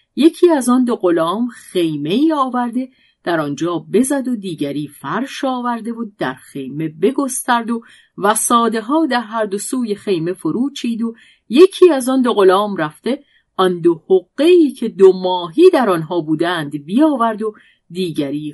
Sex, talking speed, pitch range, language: female, 150 wpm, 165-260 Hz, Persian